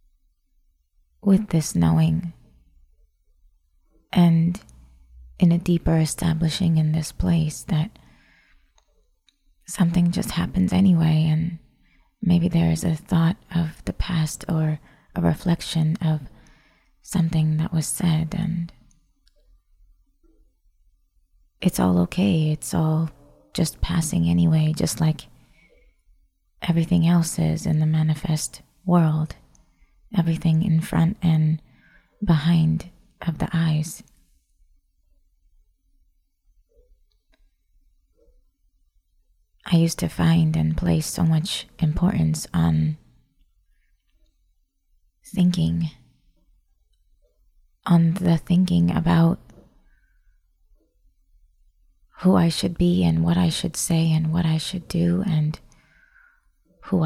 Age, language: 20-39, English